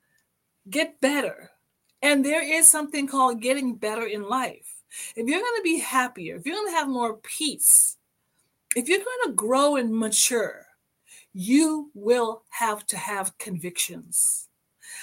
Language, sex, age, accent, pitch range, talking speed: English, female, 40-59, American, 215-305 Hz, 150 wpm